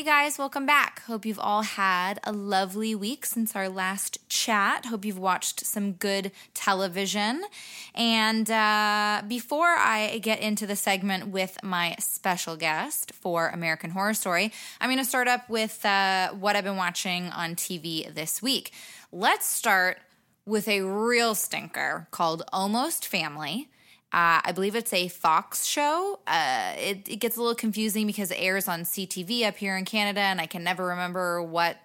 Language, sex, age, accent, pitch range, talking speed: English, female, 20-39, American, 175-220 Hz, 170 wpm